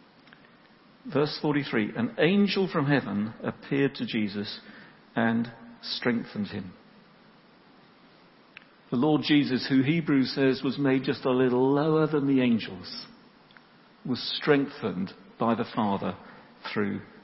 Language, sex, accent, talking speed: English, male, British, 115 wpm